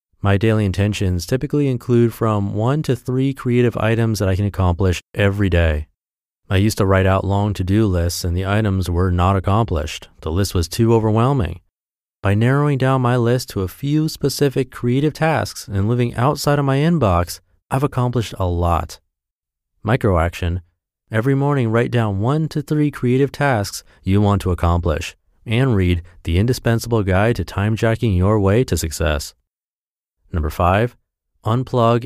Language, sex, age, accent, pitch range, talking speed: English, male, 30-49, American, 90-125 Hz, 160 wpm